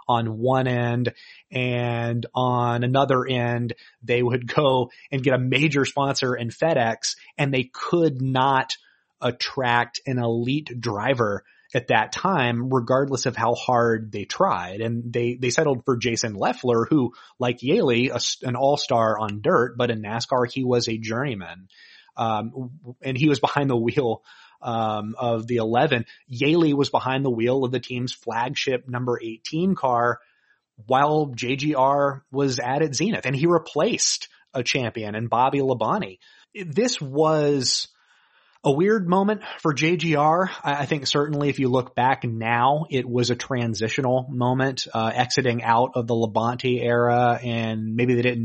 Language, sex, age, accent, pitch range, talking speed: English, male, 30-49, American, 120-140 Hz, 155 wpm